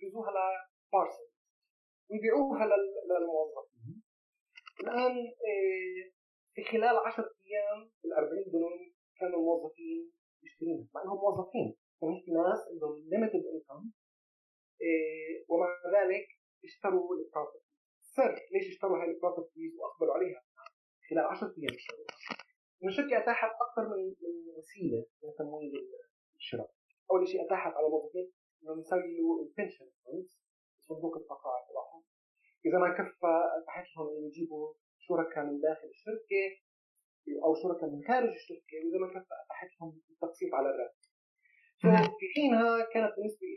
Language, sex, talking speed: Arabic, male, 115 wpm